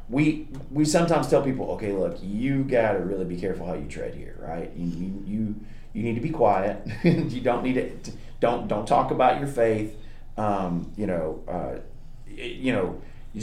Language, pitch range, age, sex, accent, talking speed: English, 100-130 Hz, 30-49, male, American, 185 wpm